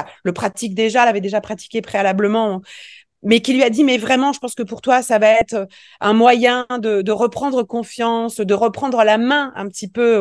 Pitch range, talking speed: 180-230 Hz, 210 wpm